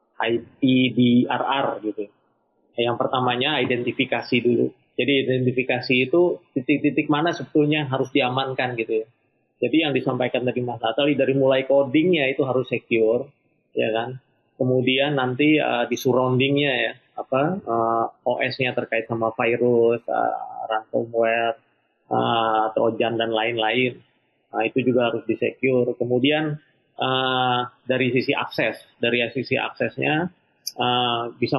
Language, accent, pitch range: Indonesian, native, 120-135 Hz